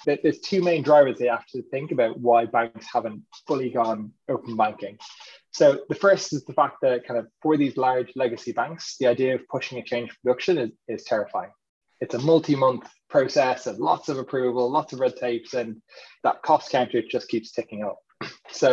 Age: 20-39